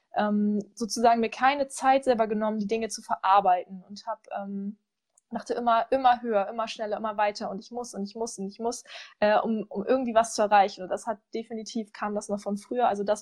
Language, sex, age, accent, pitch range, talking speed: German, female, 20-39, German, 205-240 Hz, 220 wpm